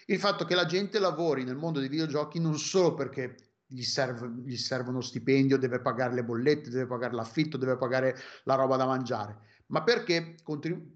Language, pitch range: Italian, 135-165 Hz